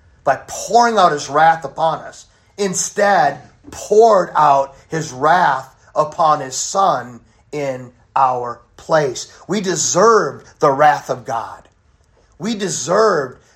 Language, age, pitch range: English, 40-59, 130-175 Hz